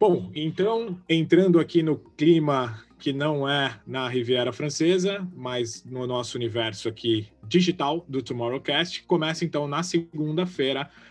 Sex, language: male, Portuguese